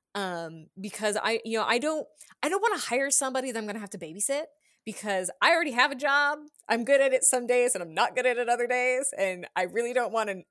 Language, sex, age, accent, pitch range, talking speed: English, female, 20-39, American, 180-245 Hz, 265 wpm